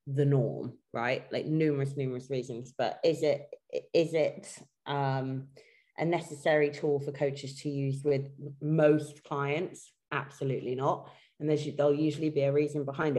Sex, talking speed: female, 150 wpm